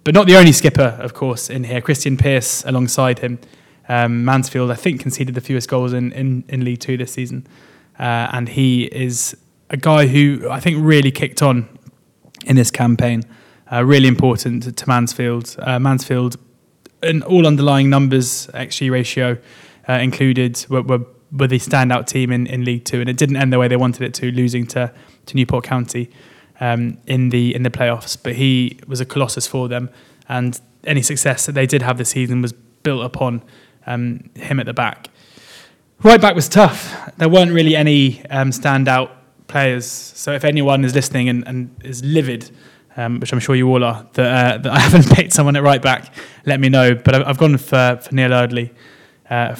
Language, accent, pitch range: English, British, 125-140 Hz